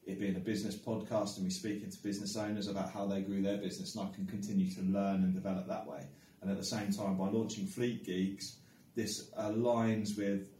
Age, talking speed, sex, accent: 20-39, 225 wpm, male, British